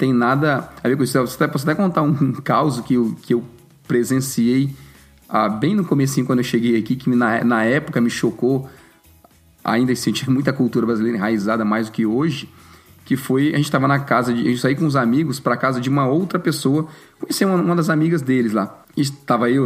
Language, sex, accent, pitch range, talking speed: Portuguese, male, Brazilian, 120-160 Hz, 215 wpm